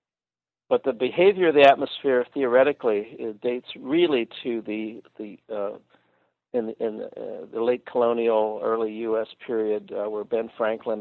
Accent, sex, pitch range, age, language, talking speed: American, male, 110-135 Hz, 50-69, English, 155 wpm